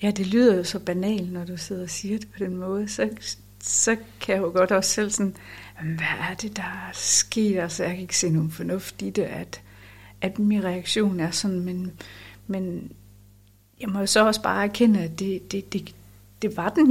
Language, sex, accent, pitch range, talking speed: Danish, female, native, 130-210 Hz, 215 wpm